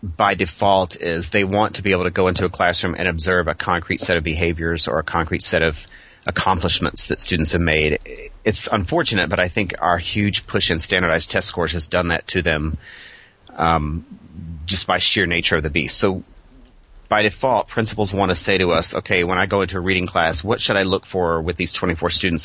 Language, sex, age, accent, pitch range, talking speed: English, male, 30-49, American, 85-100 Hz, 215 wpm